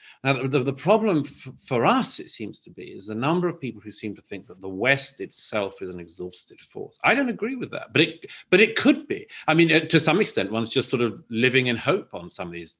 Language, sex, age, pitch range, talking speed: English, male, 40-59, 110-165 Hz, 265 wpm